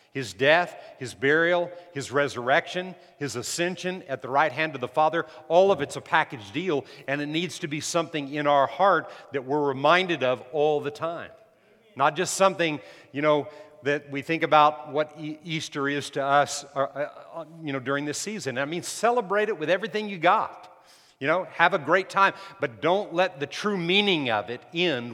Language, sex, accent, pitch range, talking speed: English, male, American, 140-175 Hz, 190 wpm